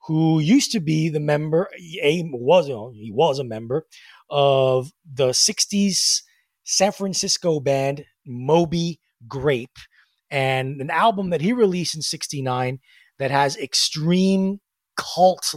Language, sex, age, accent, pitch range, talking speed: English, male, 30-49, American, 130-195 Hz, 125 wpm